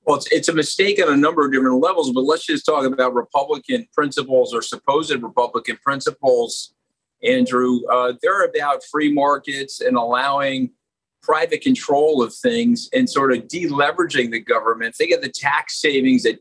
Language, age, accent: English, 50-69, American